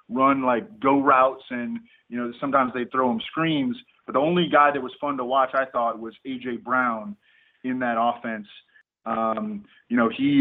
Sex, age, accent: male, 20-39, American